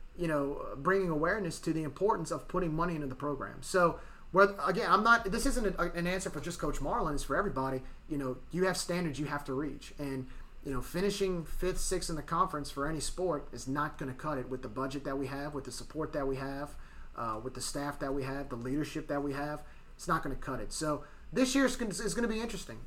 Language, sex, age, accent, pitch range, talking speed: English, male, 30-49, American, 140-185 Hz, 250 wpm